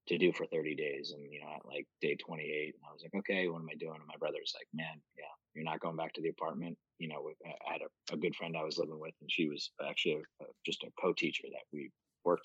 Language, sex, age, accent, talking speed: English, male, 30-49, American, 265 wpm